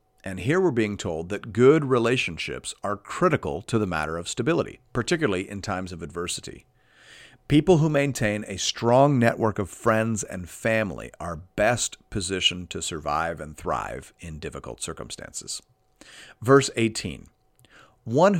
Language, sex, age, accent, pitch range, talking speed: English, male, 40-59, American, 90-125 Hz, 140 wpm